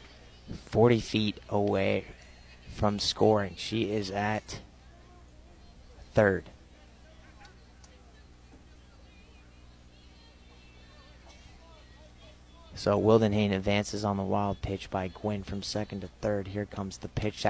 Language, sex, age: English, male, 30-49